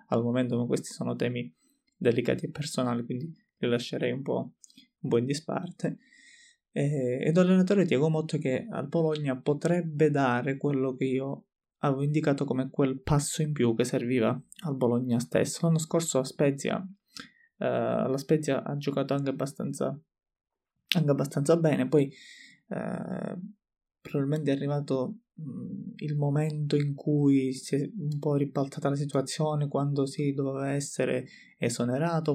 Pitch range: 125-155 Hz